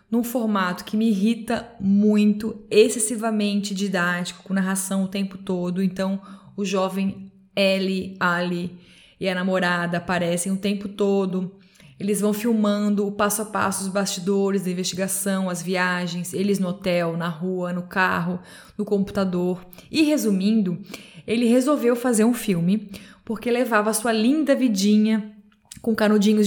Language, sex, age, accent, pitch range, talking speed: Portuguese, female, 20-39, Brazilian, 195-230 Hz, 140 wpm